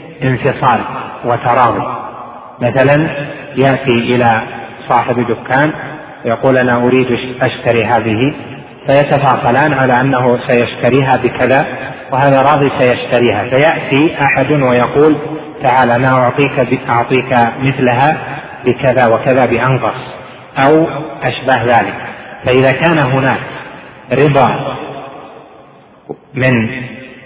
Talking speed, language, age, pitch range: 80 wpm, Arabic, 30-49, 120-140 Hz